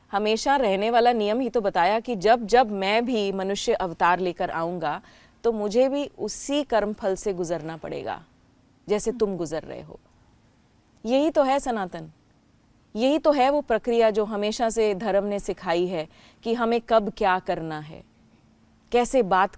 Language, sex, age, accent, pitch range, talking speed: Hindi, female, 30-49, native, 180-230 Hz, 160 wpm